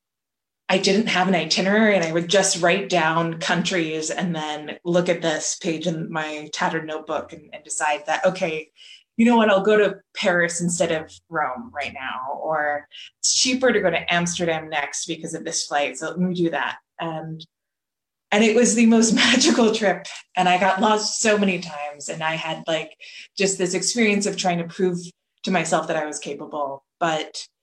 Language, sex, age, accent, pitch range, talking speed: English, female, 20-39, American, 160-195 Hz, 195 wpm